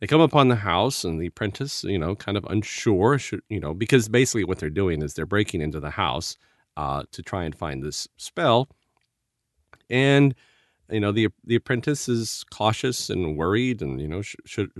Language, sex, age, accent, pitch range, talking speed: English, male, 40-59, American, 90-125 Hz, 200 wpm